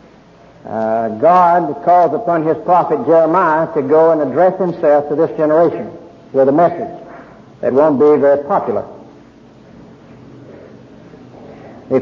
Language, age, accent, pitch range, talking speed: English, 60-79, American, 140-180 Hz, 120 wpm